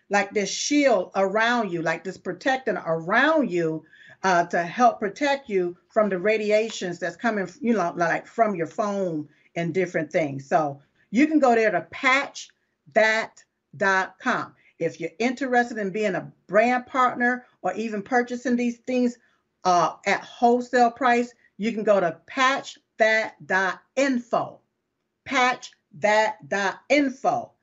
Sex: female